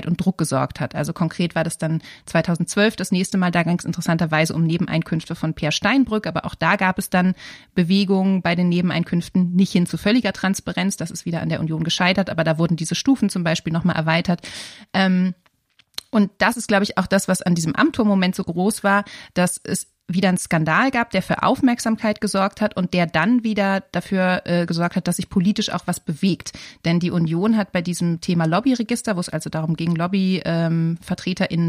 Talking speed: 205 wpm